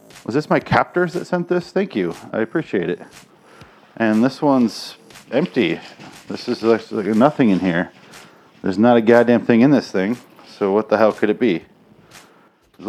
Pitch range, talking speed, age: 100-160 Hz, 175 wpm, 30-49